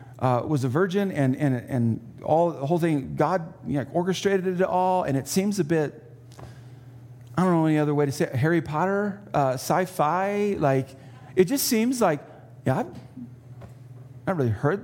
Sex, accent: male, American